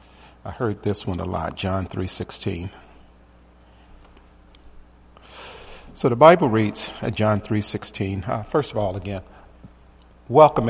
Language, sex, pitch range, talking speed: English, male, 80-115 Hz, 120 wpm